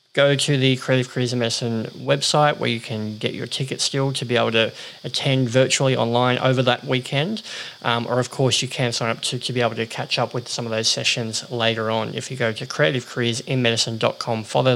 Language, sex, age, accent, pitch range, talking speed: English, male, 20-39, Australian, 120-135 Hz, 215 wpm